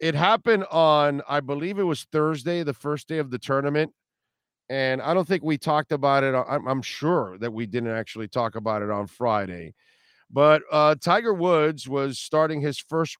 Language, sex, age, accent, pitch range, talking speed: English, male, 50-69, American, 130-170 Hz, 185 wpm